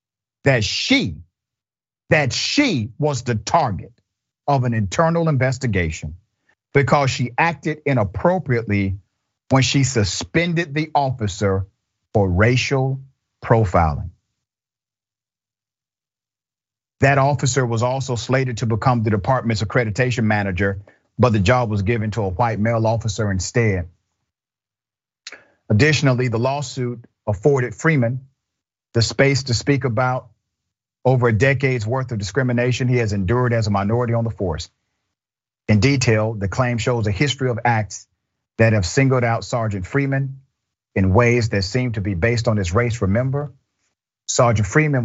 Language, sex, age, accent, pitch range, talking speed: English, male, 50-69, American, 105-130 Hz, 130 wpm